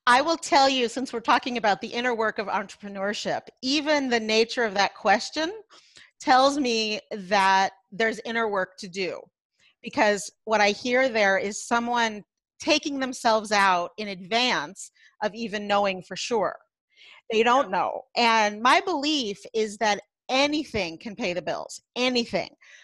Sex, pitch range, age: female, 200-255 Hz, 40-59